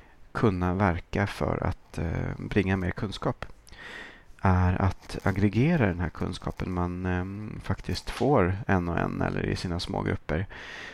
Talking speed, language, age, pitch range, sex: 130 wpm, Swedish, 30-49, 90-100 Hz, male